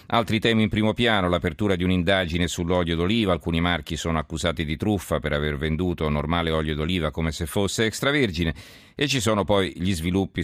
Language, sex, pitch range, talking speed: Italian, male, 80-95 Hz, 185 wpm